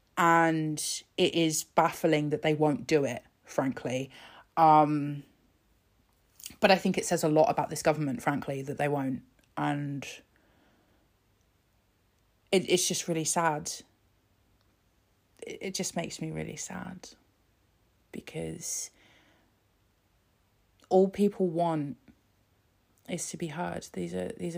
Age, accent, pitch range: 30-49, British, 105-165 Hz